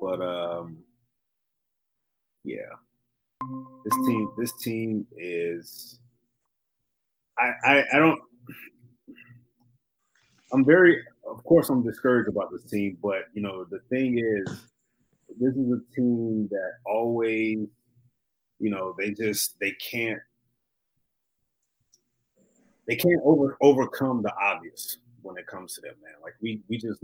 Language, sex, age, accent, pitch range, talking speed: English, male, 30-49, American, 100-120 Hz, 120 wpm